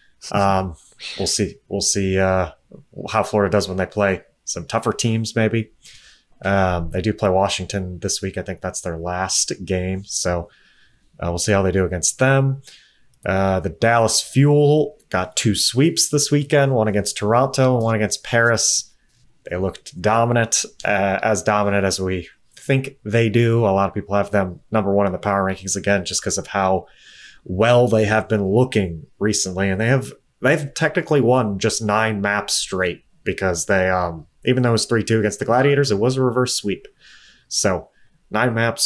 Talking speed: 180 wpm